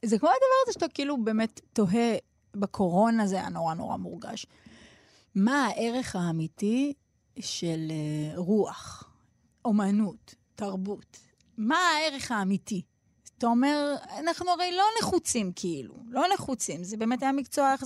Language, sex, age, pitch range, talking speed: Hebrew, female, 20-39, 205-285 Hz, 125 wpm